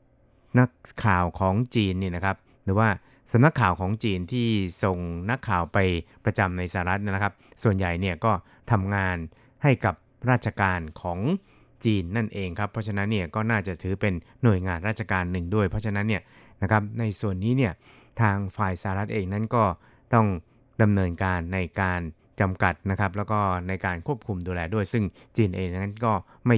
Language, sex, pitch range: Thai, male, 95-115 Hz